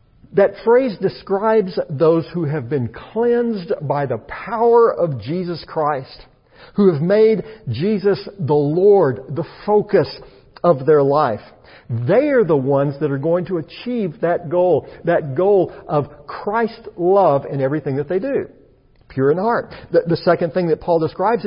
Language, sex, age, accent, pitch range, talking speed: English, male, 50-69, American, 145-200 Hz, 155 wpm